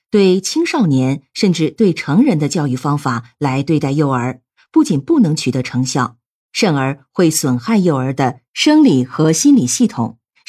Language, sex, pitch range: Chinese, female, 135-195 Hz